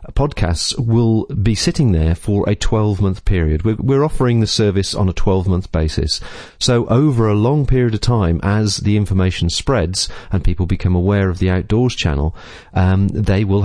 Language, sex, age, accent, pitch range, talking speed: English, male, 40-59, British, 90-120 Hz, 170 wpm